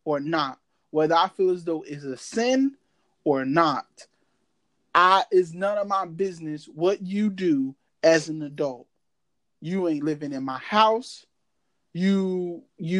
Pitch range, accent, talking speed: 165-225 Hz, American, 150 wpm